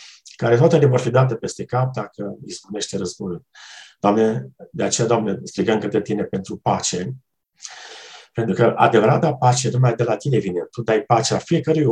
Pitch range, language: 110-155 Hz, Romanian